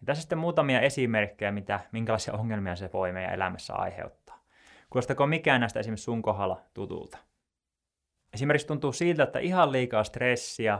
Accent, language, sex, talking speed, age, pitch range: native, Finnish, male, 145 wpm, 20-39, 100-130 Hz